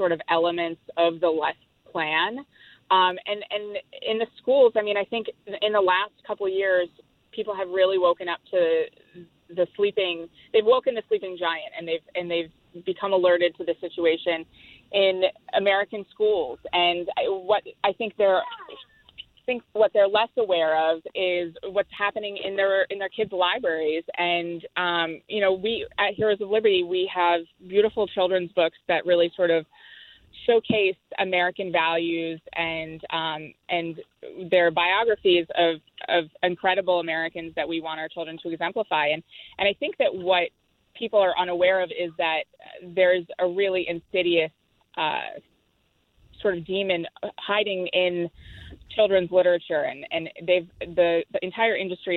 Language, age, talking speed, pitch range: English, 20-39, 160 wpm, 170-205 Hz